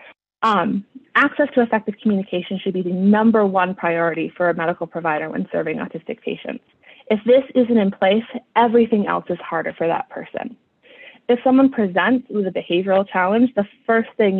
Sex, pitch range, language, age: female, 175-225 Hz, English, 20-39